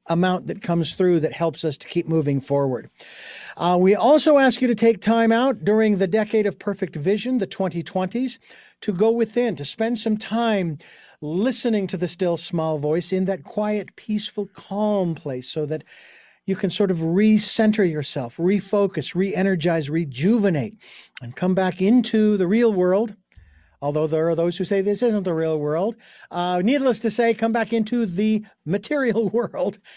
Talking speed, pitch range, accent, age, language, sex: 170 wpm, 165-215 Hz, American, 50-69, English, male